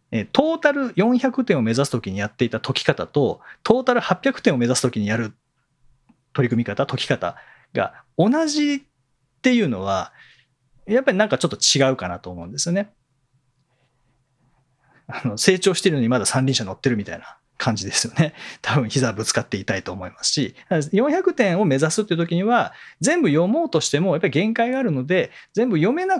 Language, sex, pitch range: Japanese, male, 125-210 Hz